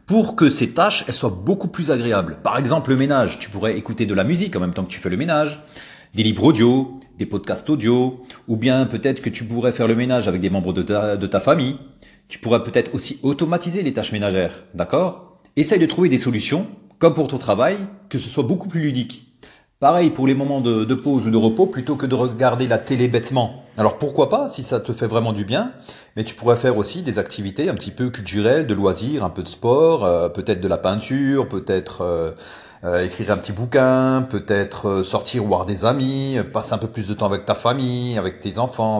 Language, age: French, 40-59